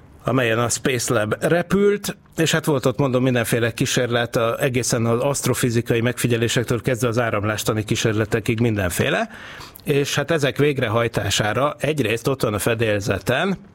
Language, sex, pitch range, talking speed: Hungarian, male, 110-135 Hz, 135 wpm